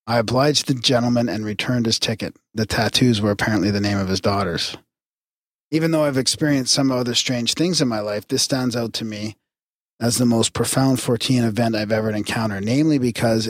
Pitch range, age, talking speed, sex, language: 110-140 Hz, 40-59, 195 wpm, male, English